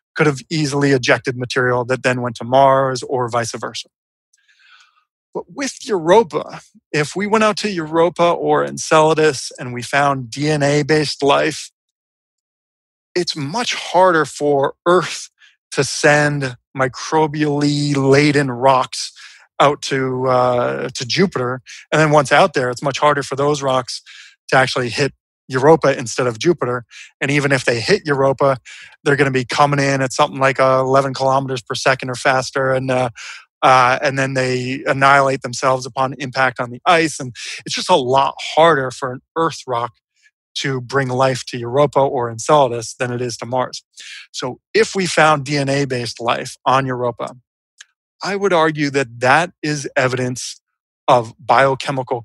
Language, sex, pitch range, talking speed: English, male, 130-150 Hz, 155 wpm